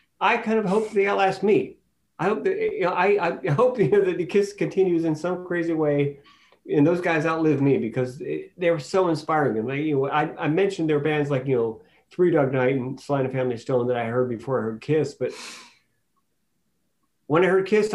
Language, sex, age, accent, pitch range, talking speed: English, male, 50-69, American, 140-195 Hz, 225 wpm